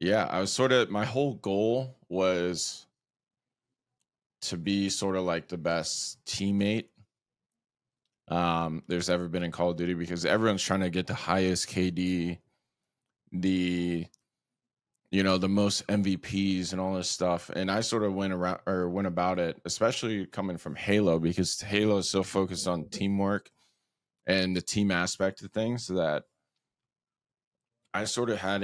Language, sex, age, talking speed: English, male, 20-39, 155 wpm